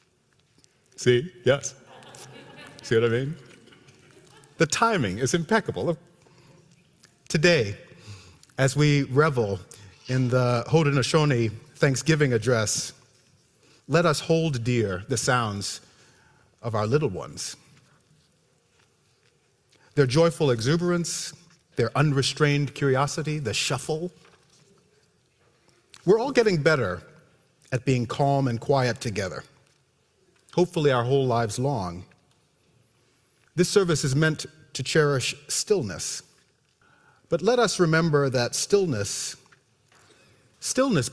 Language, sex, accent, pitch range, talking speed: English, male, American, 120-160 Hz, 95 wpm